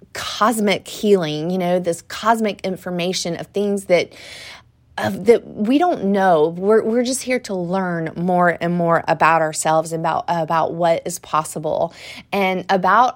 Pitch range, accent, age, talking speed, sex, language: 170-200 Hz, American, 30-49, 155 wpm, female, English